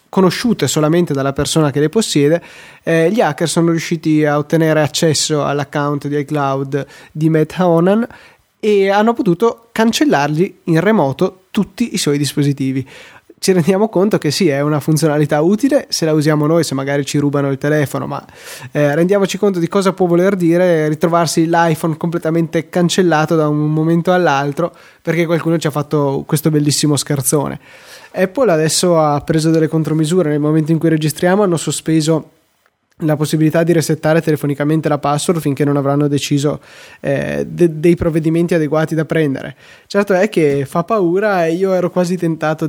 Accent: native